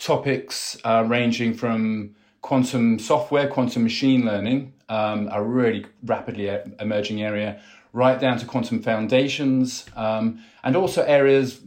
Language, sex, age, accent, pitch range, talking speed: English, male, 30-49, British, 105-125 Hz, 125 wpm